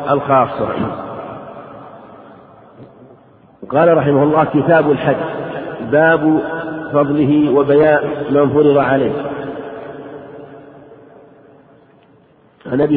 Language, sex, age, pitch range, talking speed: Arabic, male, 50-69, 135-150 Hz, 60 wpm